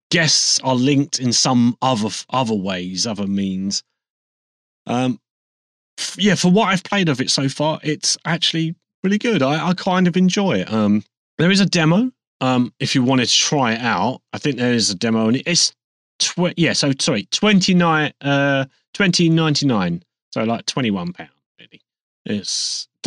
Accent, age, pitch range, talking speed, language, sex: British, 30-49, 105-155 Hz, 170 wpm, English, male